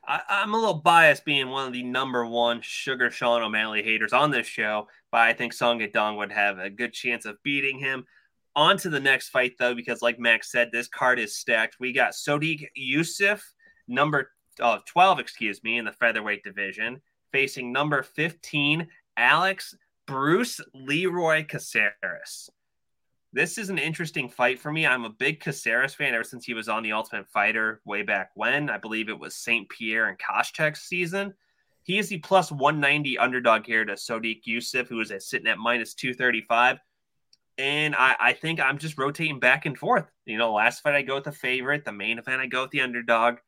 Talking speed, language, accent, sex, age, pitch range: 190 wpm, English, American, male, 20-39, 120-150 Hz